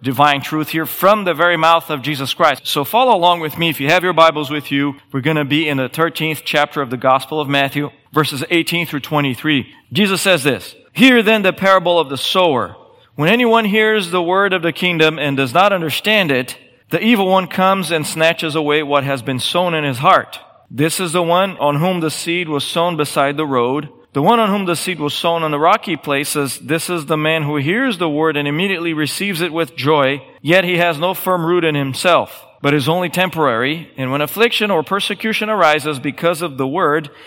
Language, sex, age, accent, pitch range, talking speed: English, male, 40-59, American, 140-180 Hz, 220 wpm